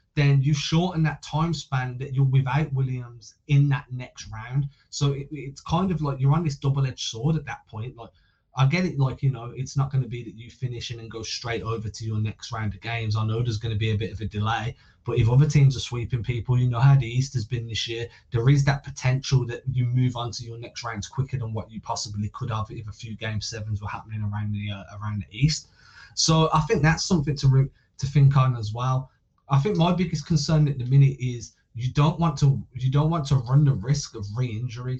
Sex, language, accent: male, English, British